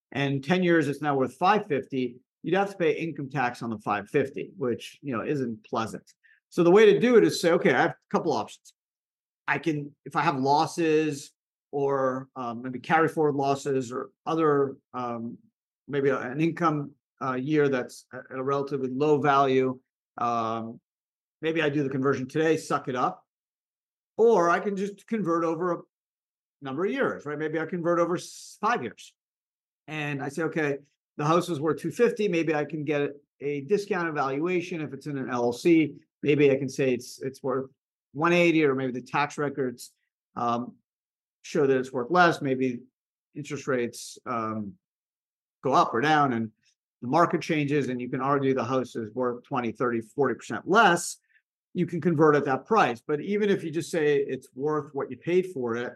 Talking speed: 185 wpm